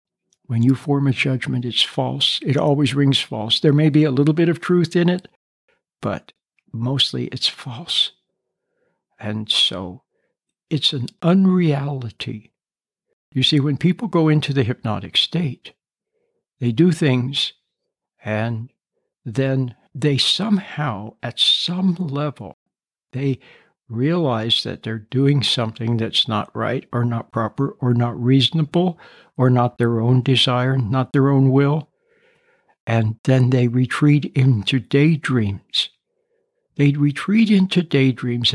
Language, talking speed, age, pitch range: English, 130 wpm, 60-79, 120-155 Hz